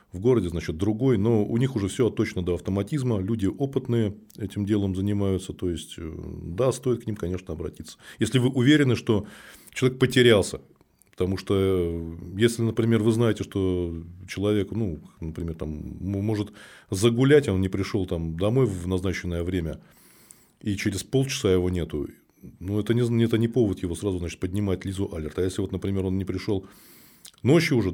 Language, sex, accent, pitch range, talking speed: Russian, male, native, 90-115 Hz, 165 wpm